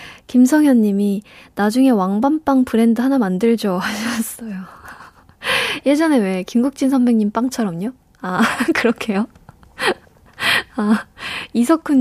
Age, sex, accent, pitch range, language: 20-39, female, native, 205-265 Hz, Korean